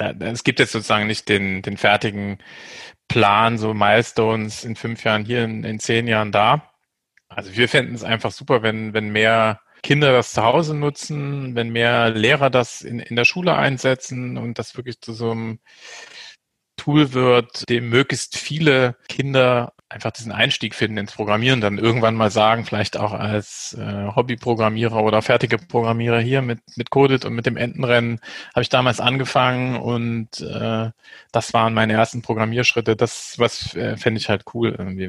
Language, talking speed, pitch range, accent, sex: German, 170 wpm, 110-125 Hz, German, male